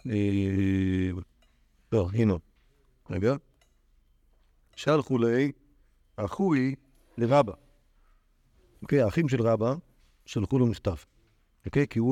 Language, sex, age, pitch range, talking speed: Hebrew, male, 50-69, 100-140 Hz, 80 wpm